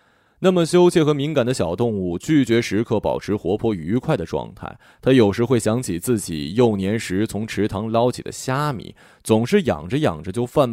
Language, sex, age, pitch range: Chinese, male, 20-39, 100-160 Hz